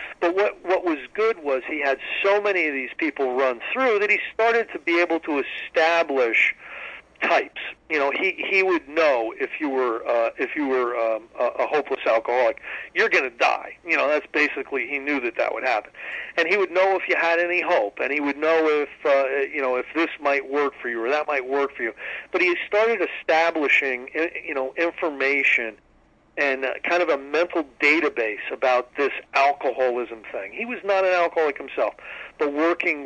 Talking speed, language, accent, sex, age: 200 wpm, English, American, male, 50-69